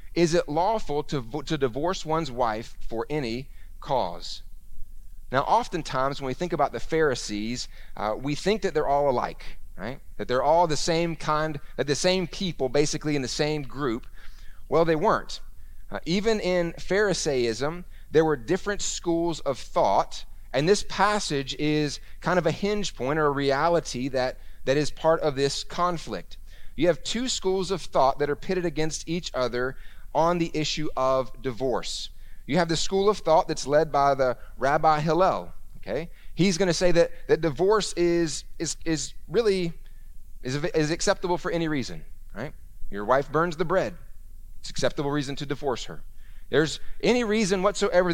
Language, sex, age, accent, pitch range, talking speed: English, male, 30-49, American, 130-175 Hz, 170 wpm